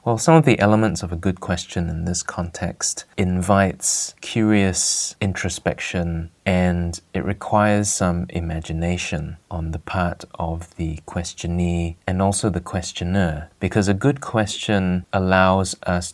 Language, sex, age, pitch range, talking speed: English, male, 20-39, 80-95 Hz, 135 wpm